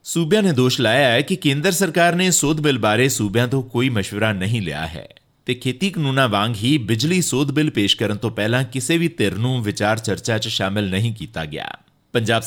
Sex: male